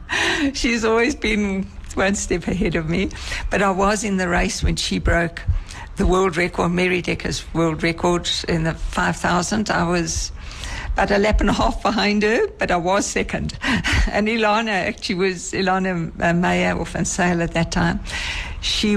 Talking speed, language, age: 170 wpm, English, 60-79